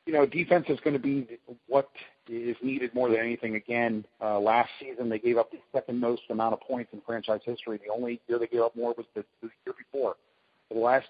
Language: English